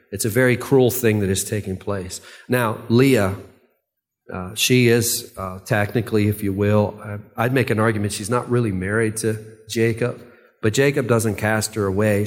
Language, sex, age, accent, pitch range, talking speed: English, male, 40-59, American, 105-120 Hz, 170 wpm